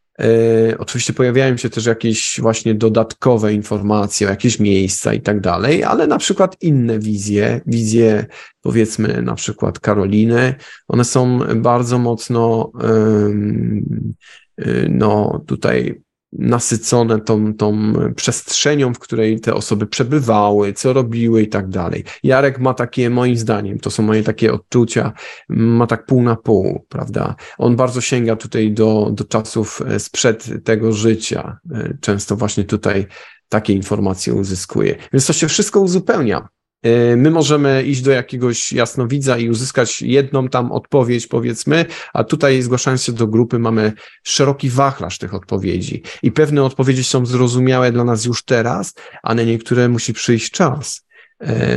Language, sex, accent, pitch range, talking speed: Polish, male, native, 110-130 Hz, 140 wpm